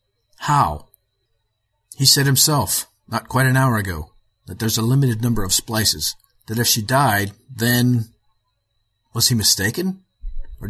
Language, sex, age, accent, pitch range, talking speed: English, male, 50-69, American, 105-120 Hz, 140 wpm